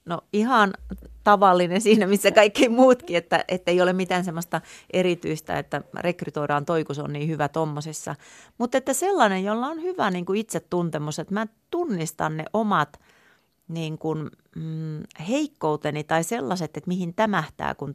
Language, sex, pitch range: Finnish, female, 155-195 Hz